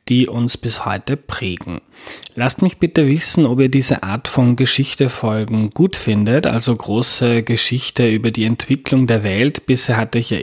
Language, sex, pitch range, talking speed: German, male, 105-130 Hz, 165 wpm